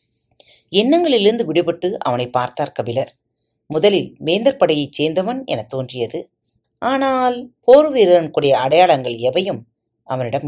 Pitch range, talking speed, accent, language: 125-185 Hz, 95 wpm, native, Tamil